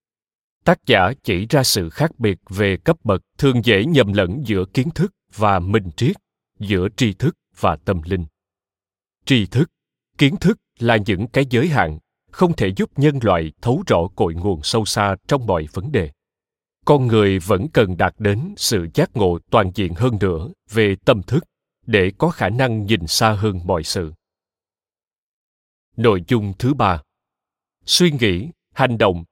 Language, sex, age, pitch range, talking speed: Vietnamese, male, 20-39, 95-135 Hz, 170 wpm